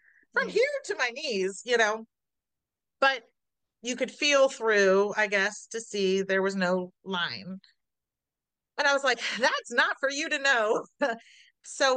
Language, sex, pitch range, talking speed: English, female, 185-250 Hz, 155 wpm